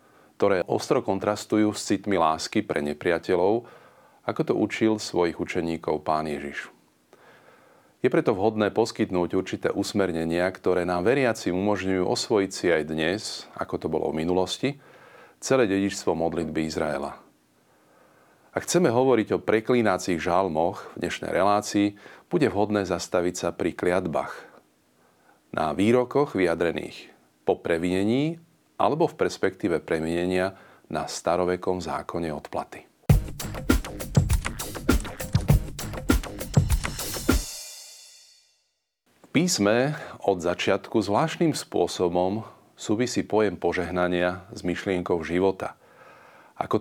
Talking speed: 100 wpm